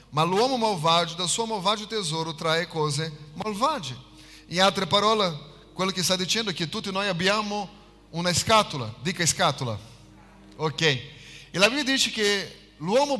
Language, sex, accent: Italian, male, Brazilian